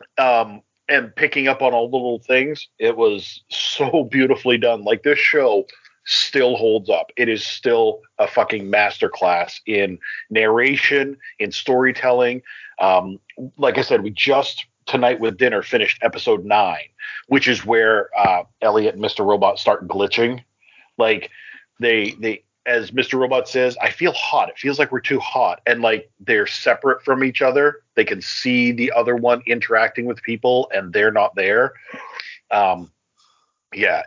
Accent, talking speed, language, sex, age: American, 160 wpm, English, male, 40-59